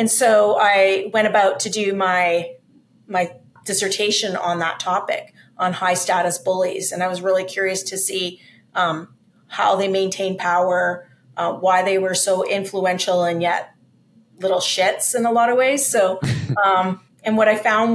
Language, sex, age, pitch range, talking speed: English, female, 30-49, 180-205 Hz, 165 wpm